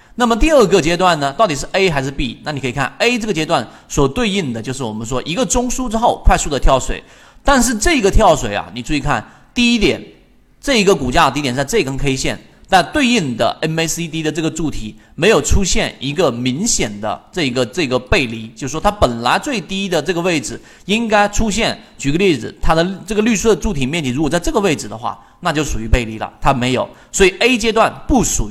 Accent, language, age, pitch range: native, Chinese, 30-49, 125-205 Hz